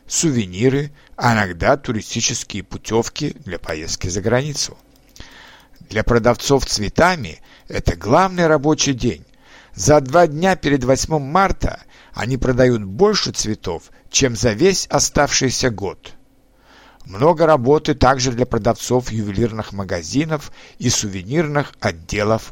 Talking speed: 110 wpm